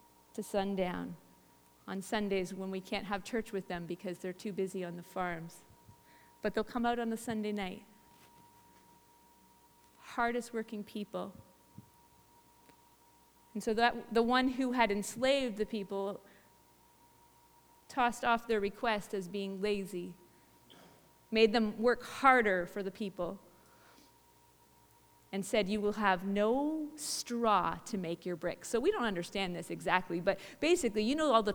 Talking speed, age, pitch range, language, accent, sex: 145 wpm, 30-49, 180-240 Hz, English, American, female